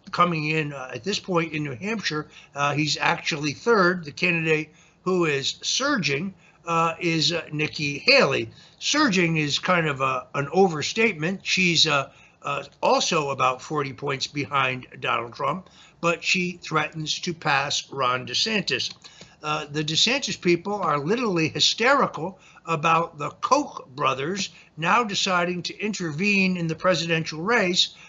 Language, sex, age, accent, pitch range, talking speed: English, male, 60-79, American, 150-185 Hz, 140 wpm